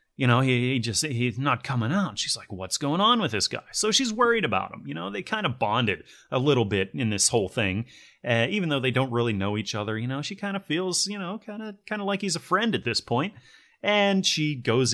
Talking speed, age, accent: 260 wpm, 30-49, American